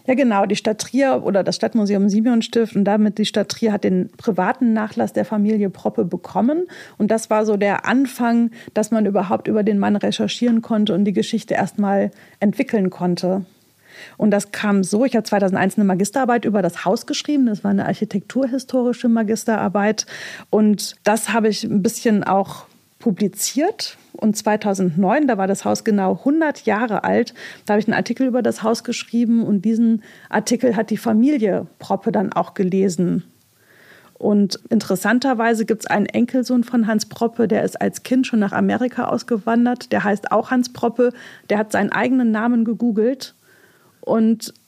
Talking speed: 170 wpm